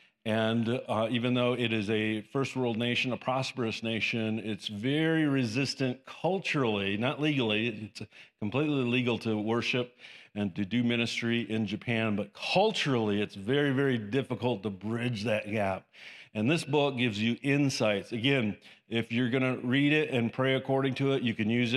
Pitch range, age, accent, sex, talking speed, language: 110-130 Hz, 50-69, American, male, 170 wpm, English